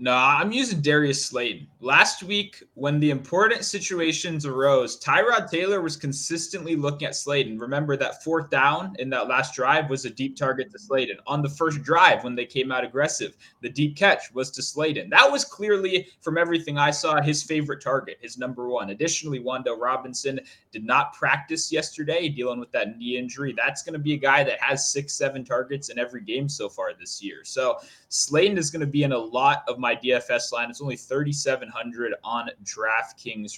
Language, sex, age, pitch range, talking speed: English, male, 20-39, 130-165 Hz, 195 wpm